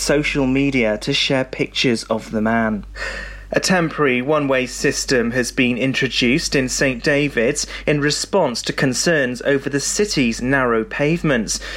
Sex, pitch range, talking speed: male, 120-150 Hz, 140 wpm